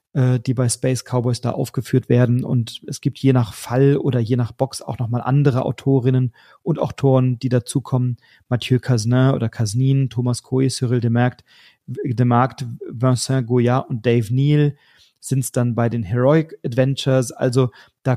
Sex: male